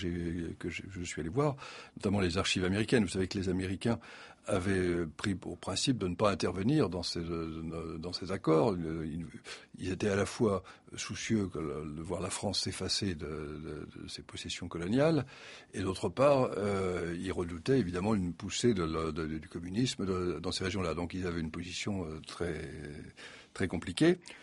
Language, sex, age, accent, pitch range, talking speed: French, male, 60-79, French, 85-115 Hz, 160 wpm